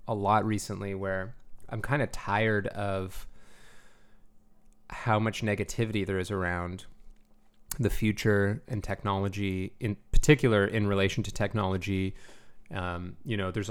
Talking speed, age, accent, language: 125 wpm, 30-49, American, English